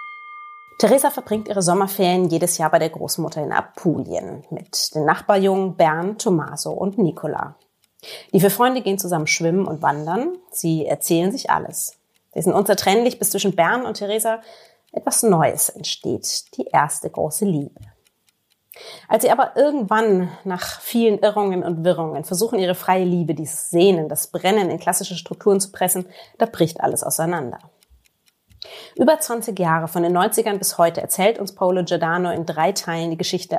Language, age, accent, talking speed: German, 30-49, German, 155 wpm